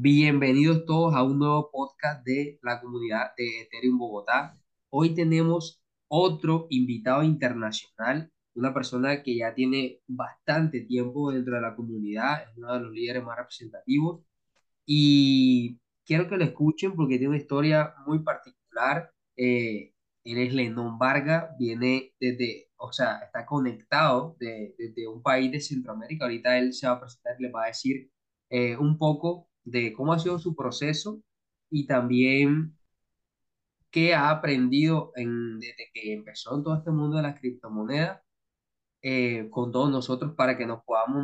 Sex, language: male, Spanish